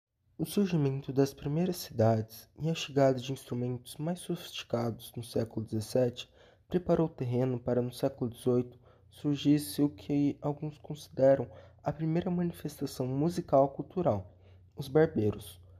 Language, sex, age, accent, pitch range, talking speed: Portuguese, male, 20-39, Brazilian, 120-145 Hz, 130 wpm